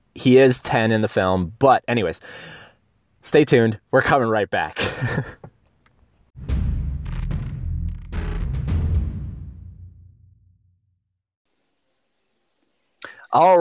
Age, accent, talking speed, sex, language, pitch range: 20-39, American, 65 wpm, male, English, 100-130 Hz